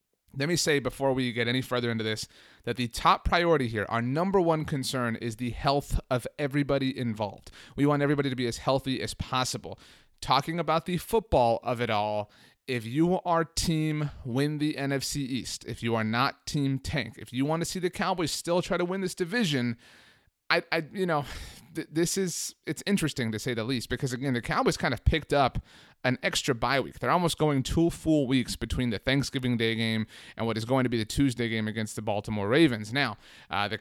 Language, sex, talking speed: English, male, 215 wpm